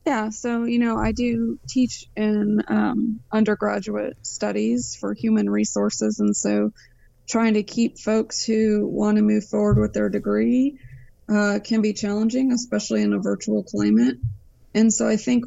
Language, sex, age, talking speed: English, female, 20-39, 160 wpm